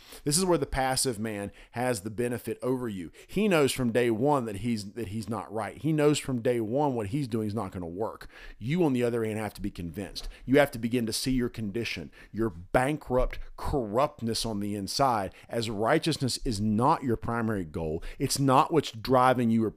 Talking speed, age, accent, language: 215 wpm, 40-59, American, English